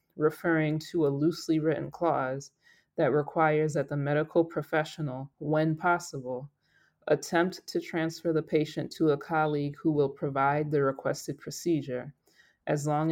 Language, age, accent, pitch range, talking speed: English, 20-39, American, 145-160 Hz, 135 wpm